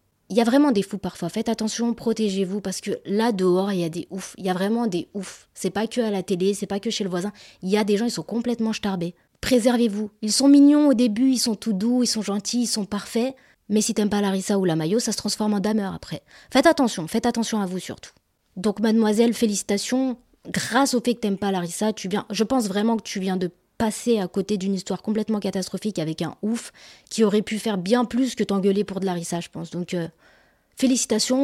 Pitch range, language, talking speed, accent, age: 185-230 Hz, French, 245 wpm, French, 20-39